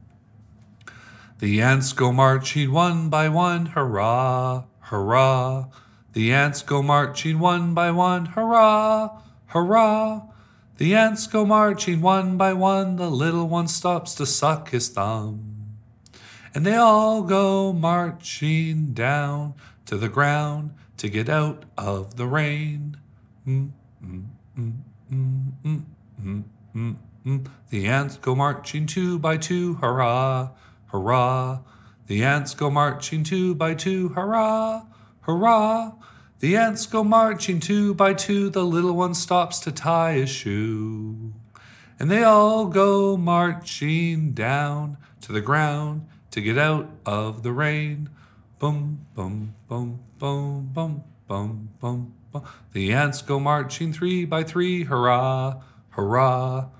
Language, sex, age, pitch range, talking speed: English, male, 40-59, 115-175 Hz, 120 wpm